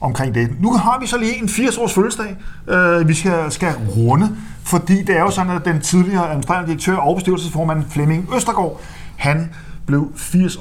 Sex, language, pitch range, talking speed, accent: male, Danish, 130-175 Hz, 175 wpm, native